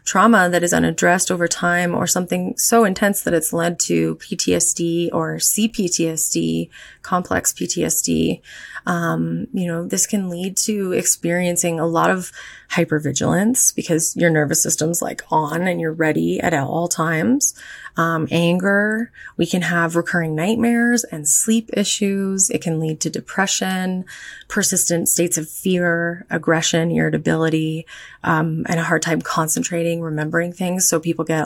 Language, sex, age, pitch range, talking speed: English, female, 20-39, 160-190 Hz, 145 wpm